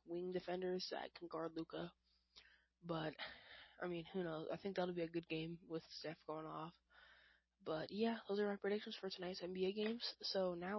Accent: American